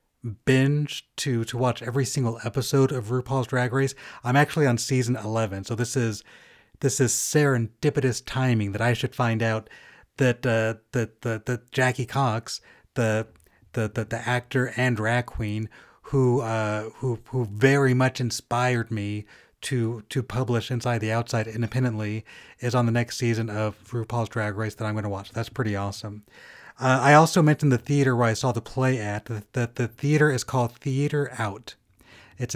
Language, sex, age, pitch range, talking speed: English, male, 30-49, 110-130 Hz, 175 wpm